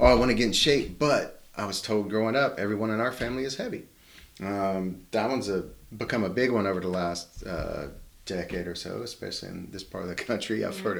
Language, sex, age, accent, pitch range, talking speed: English, male, 30-49, American, 95-120 Hz, 235 wpm